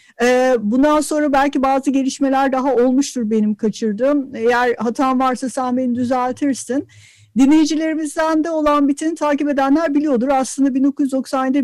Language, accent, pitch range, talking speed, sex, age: Turkish, native, 215-275 Hz, 125 wpm, female, 50-69